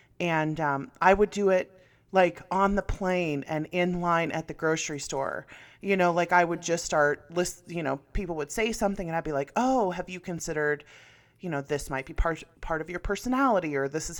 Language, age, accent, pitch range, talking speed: English, 30-49, American, 145-180 Hz, 220 wpm